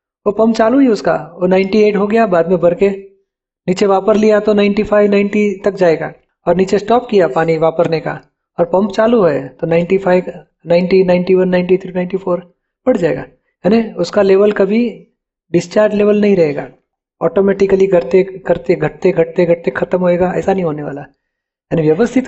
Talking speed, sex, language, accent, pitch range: 170 wpm, male, Hindi, native, 170-210 Hz